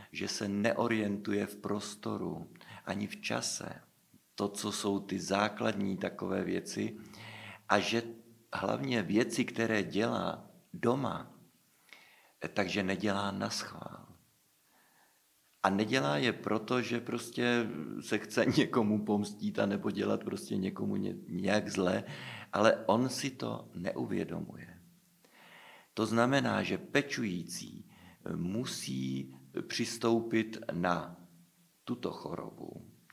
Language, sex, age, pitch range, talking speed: Czech, male, 50-69, 100-125 Hz, 100 wpm